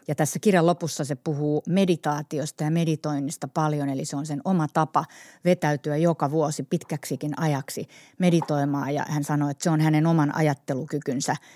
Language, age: Finnish, 30-49